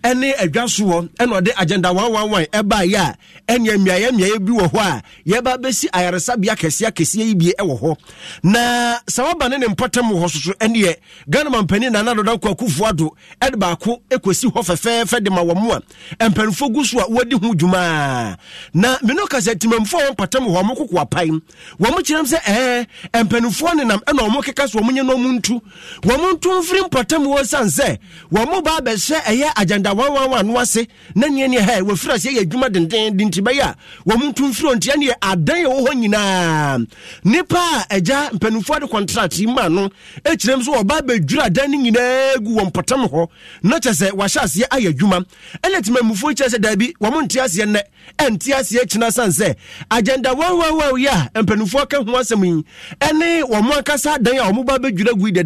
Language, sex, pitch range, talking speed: English, male, 190-260 Hz, 155 wpm